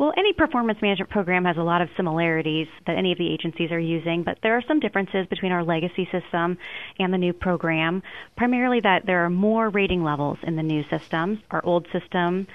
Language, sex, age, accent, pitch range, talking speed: English, female, 30-49, American, 165-200 Hz, 210 wpm